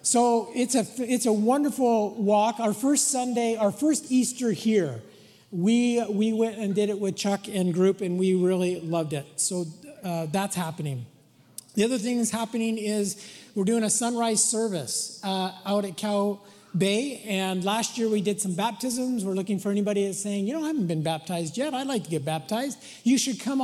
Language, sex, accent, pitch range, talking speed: English, male, American, 190-230 Hz, 195 wpm